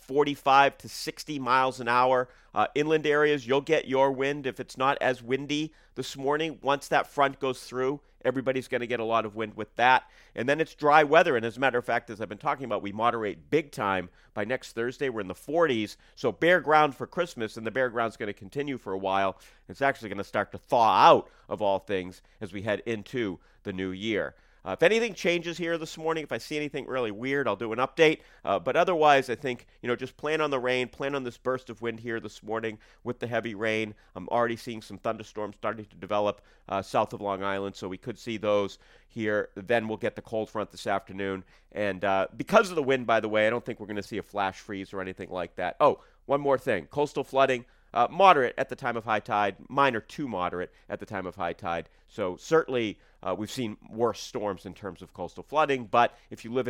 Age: 40-59